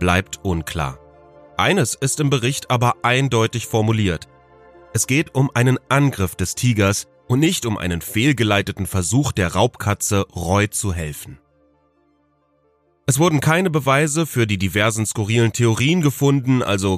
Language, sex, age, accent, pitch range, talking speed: German, male, 30-49, German, 95-130 Hz, 135 wpm